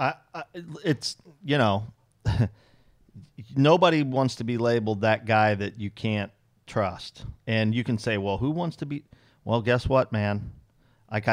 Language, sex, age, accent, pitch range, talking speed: English, male, 40-59, American, 110-130 Hz, 160 wpm